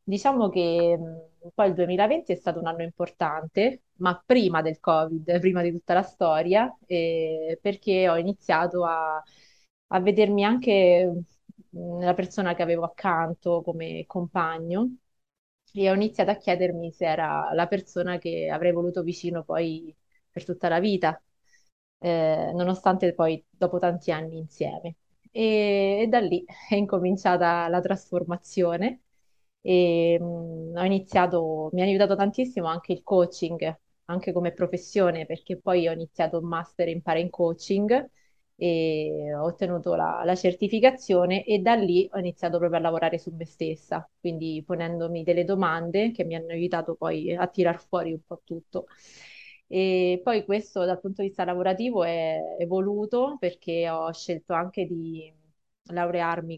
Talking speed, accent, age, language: 145 wpm, Italian, 20-39, English